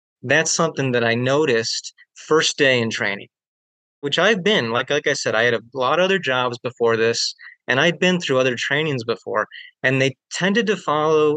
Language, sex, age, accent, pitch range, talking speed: English, male, 30-49, American, 120-155 Hz, 195 wpm